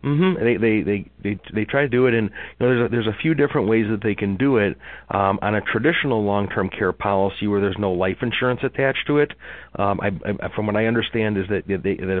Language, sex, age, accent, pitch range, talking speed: English, male, 40-59, American, 95-110 Hz, 250 wpm